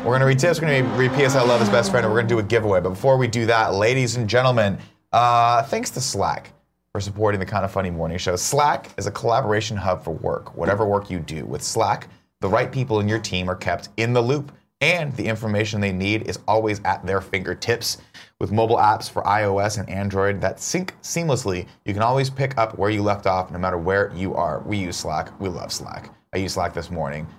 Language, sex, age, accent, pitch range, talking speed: English, male, 30-49, American, 95-120 Hz, 240 wpm